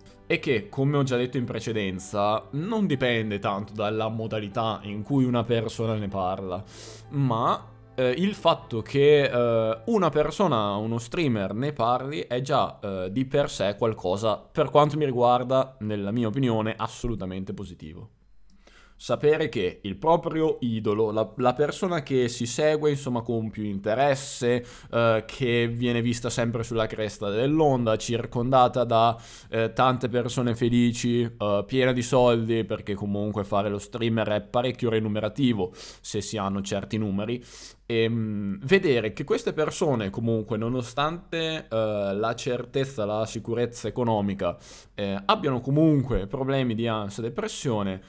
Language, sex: Italian, male